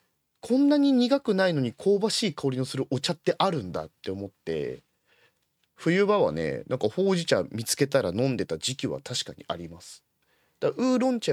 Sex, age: male, 30-49